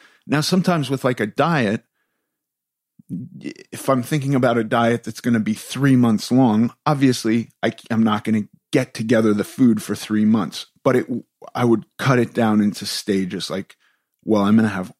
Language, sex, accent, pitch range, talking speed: English, male, American, 105-130 Hz, 180 wpm